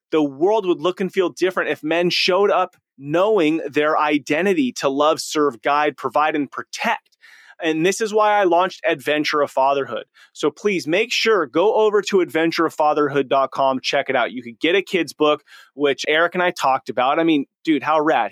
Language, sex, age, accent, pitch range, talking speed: English, male, 30-49, American, 140-175 Hz, 190 wpm